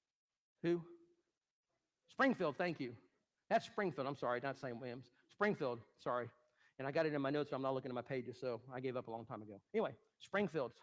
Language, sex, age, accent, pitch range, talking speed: English, male, 40-59, American, 130-175 Hz, 205 wpm